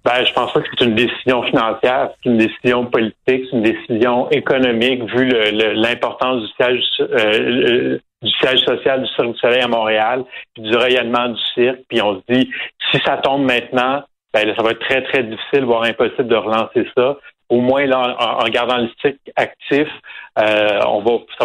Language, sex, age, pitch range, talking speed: French, male, 40-59, 115-135 Hz, 200 wpm